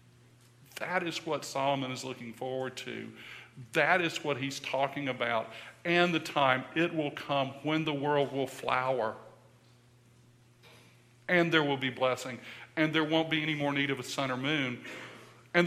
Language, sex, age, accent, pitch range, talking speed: English, male, 50-69, American, 125-170 Hz, 165 wpm